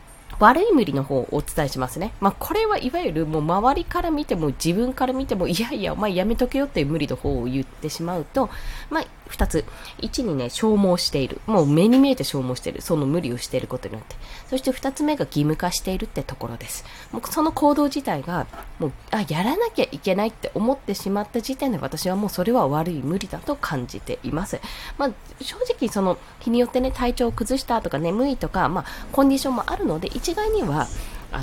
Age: 20-39